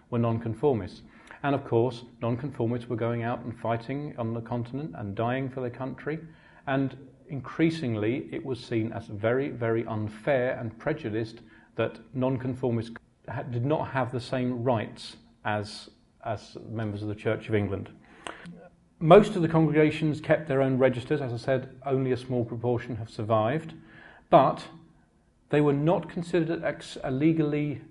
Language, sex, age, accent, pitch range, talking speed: English, male, 40-59, British, 115-145 Hz, 155 wpm